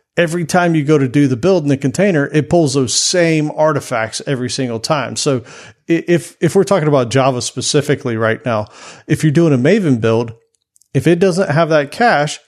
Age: 40-59